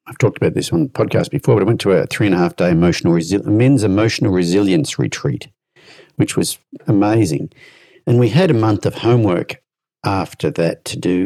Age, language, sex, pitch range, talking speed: 50-69, English, male, 95-145 Hz, 175 wpm